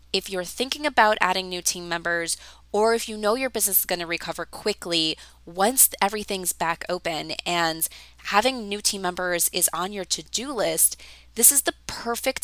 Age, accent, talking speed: 20-39, American, 180 wpm